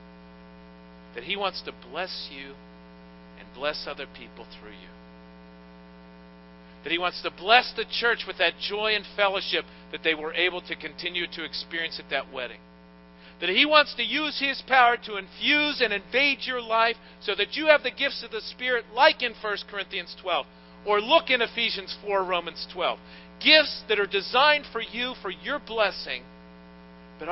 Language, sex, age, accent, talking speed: English, male, 50-69, American, 175 wpm